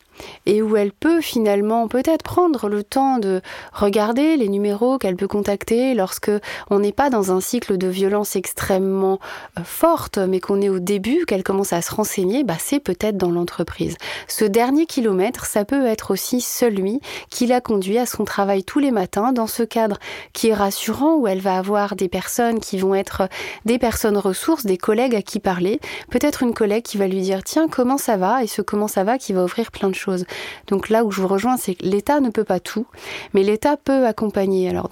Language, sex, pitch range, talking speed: French, female, 185-230 Hz, 210 wpm